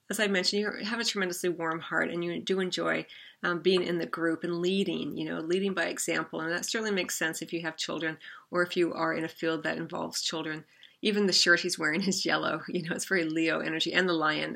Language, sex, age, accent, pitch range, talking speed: English, female, 40-59, American, 170-190 Hz, 245 wpm